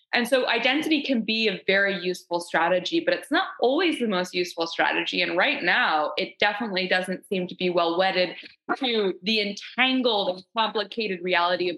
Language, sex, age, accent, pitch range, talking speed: English, female, 20-39, American, 180-240 Hz, 180 wpm